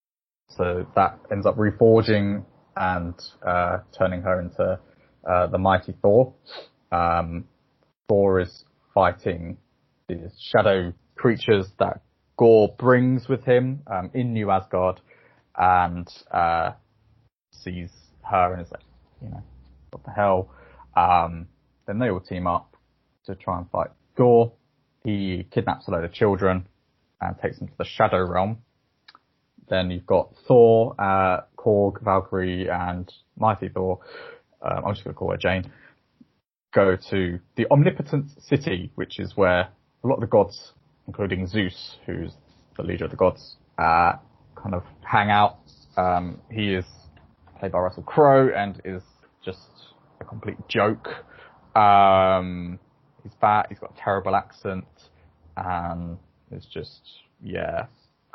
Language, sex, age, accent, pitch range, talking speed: English, male, 20-39, British, 90-105 Hz, 140 wpm